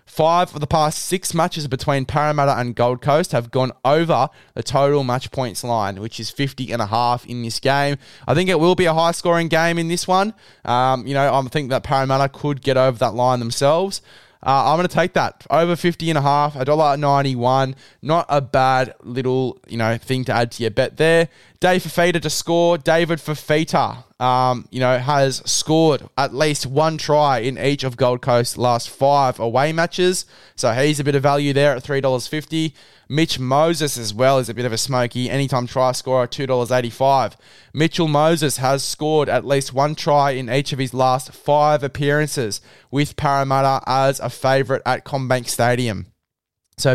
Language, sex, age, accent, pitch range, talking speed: English, male, 20-39, Australian, 120-145 Hz, 190 wpm